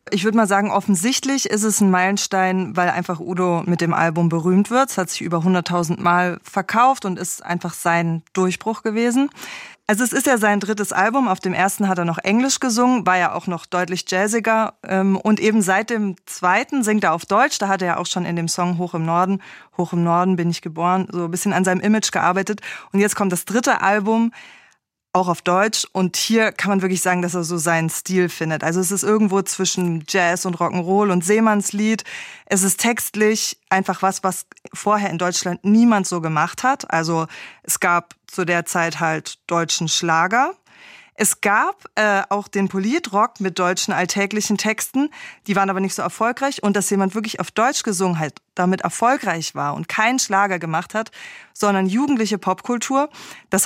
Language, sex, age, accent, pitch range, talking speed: German, female, 20-39, German, 180-220 Hz, 195 wpm